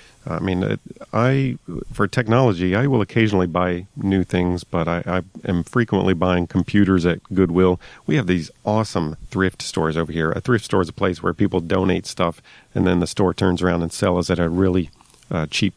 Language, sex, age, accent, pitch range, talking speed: English, male, 40-59, American, 85-100 Hz, 195 wpm